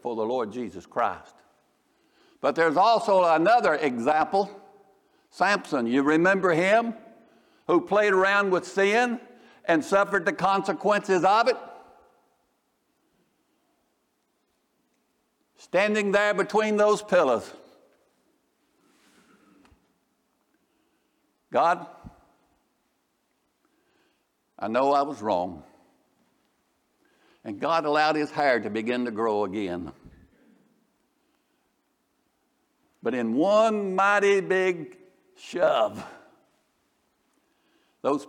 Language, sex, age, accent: English, male, 60-79, American